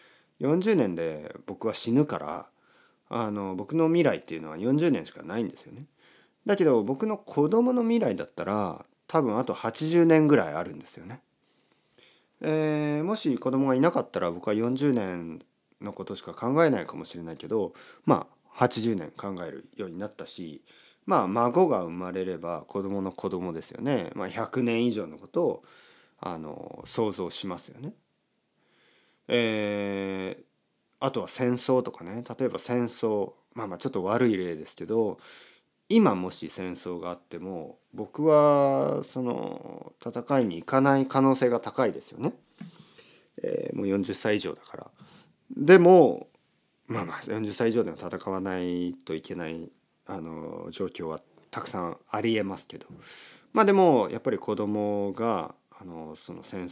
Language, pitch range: Japanese, 90-135 Hz